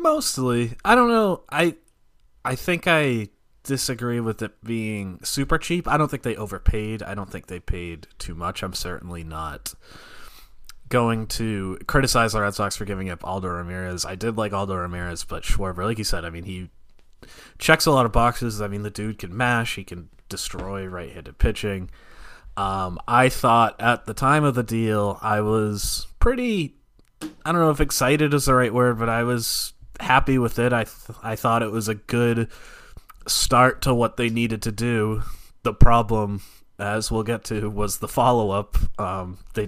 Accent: American